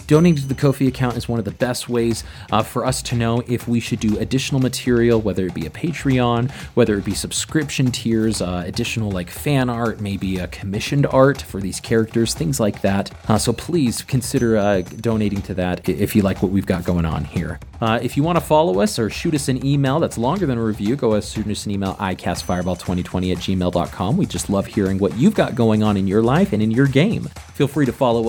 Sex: male